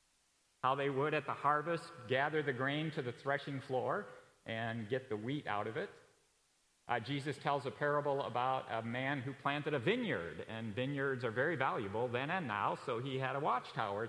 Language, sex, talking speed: English, male, 190 wpm